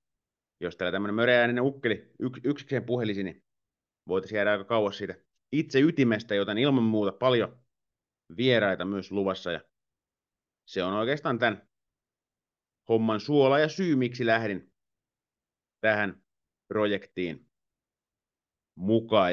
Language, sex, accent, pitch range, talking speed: Finnish, male, native, 95-125 Hz, 110 wpm